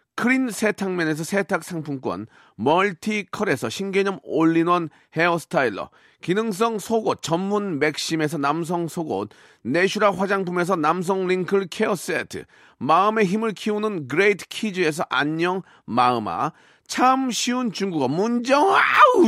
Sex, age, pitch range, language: male, 40-59, 175-220 Hz, Korean